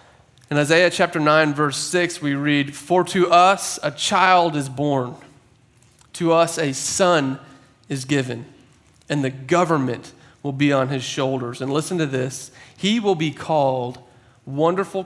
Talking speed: 150 wpm